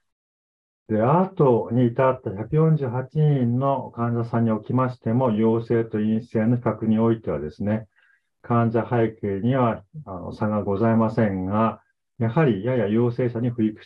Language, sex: Japanese, male